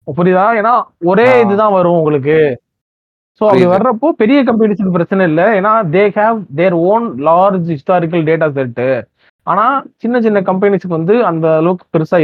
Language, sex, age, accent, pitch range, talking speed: Tamil, male, 30-49, native, 155-200 Hz, 135 wpm